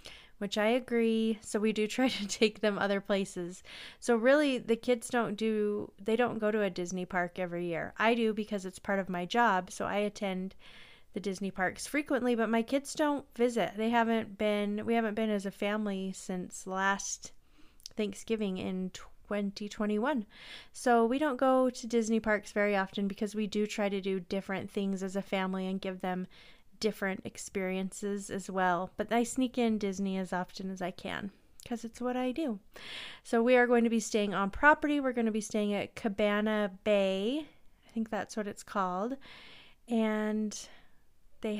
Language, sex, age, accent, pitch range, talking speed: English, female, 30-49, American, 195-235 Hz, 185 wpm